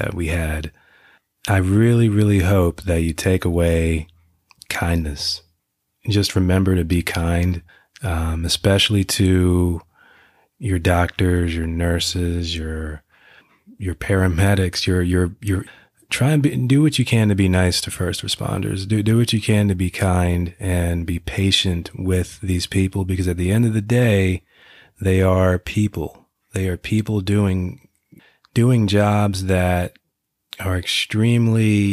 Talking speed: 140 wpm